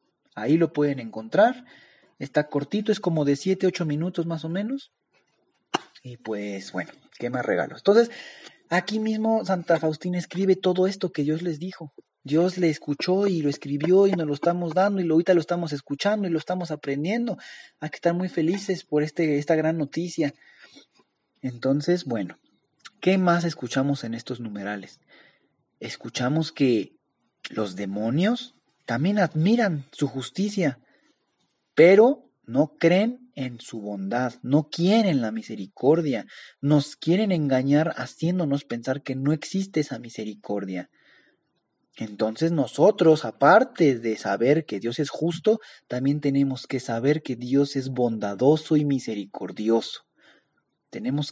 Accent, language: Mexican, Spanish